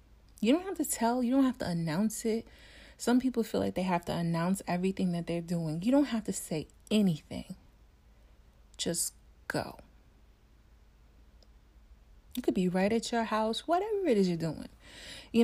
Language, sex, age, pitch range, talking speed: English, female, 30-49, 185-240 Hz, 170 wpm